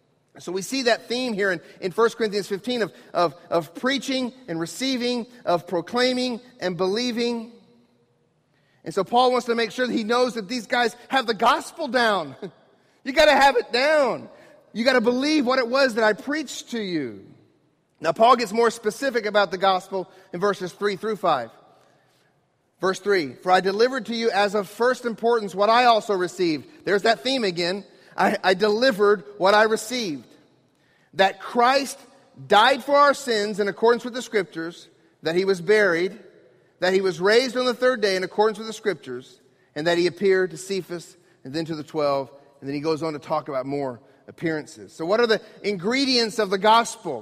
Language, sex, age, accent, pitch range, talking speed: English, male, 40-59, American, 185-240 Hz, 190 wpm